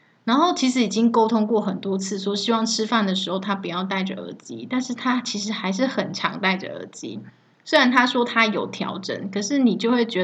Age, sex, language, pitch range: 20-39, female, Chinese, 190-225 Hz